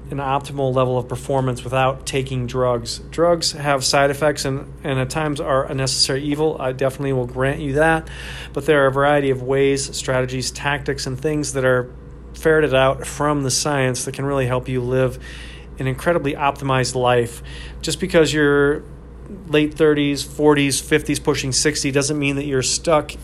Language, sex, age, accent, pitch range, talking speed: English, male, 40-59, American, 125-145 Hz, 175 wpm